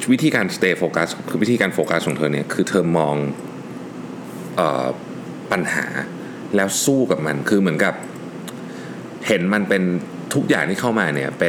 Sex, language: male, Thai